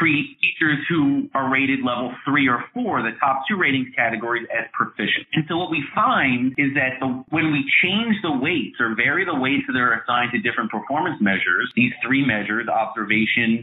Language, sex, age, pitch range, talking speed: English, male, 30-49, 120-170 Hz, 190 wpm